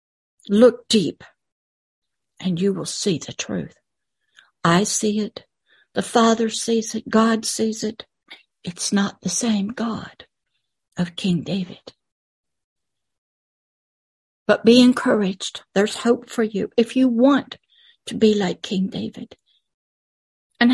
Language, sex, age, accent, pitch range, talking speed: English, female, 60-79, American, 195-235 Hz, 120 wpm